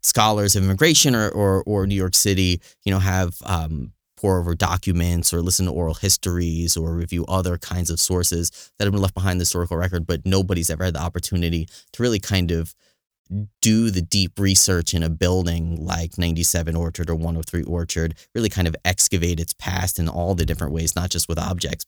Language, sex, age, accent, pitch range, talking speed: English, male, 30-49, American, 85-95 Hz, 200 wpm